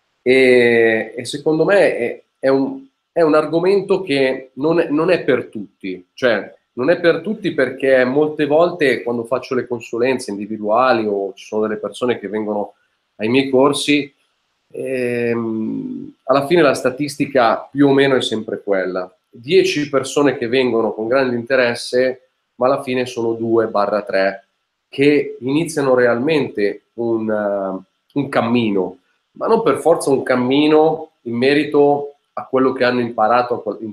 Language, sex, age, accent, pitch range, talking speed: Italian, male, 30-49, native, 110-145 Hz, 140 wpm